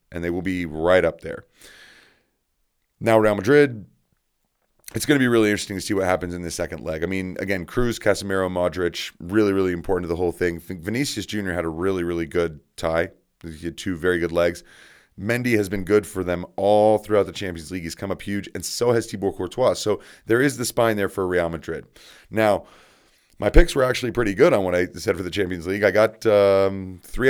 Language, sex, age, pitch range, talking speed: English, male, 30-49, 85-110 Hz, 220 wpm